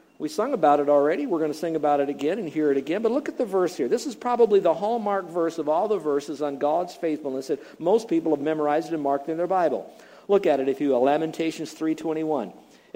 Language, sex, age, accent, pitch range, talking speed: English, male, 50-69, American, 155-210 Hz, 245 wpm